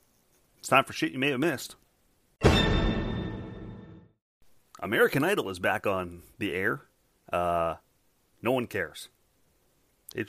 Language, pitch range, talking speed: English, 95-125 Hz, 115 wpm